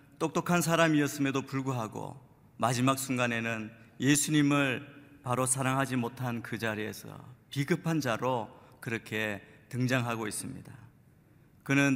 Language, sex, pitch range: Korean, male, 120-150 Hz